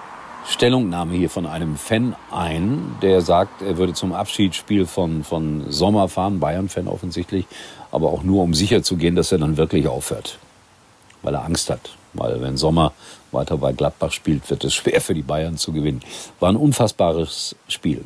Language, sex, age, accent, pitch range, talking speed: German, male, 50-69, German, 80-115 Hz, 170 wpm